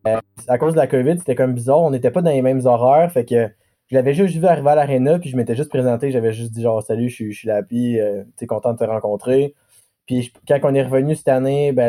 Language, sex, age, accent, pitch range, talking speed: French, male, 20-39, Canadian, 115-135 Hz, 260 wpm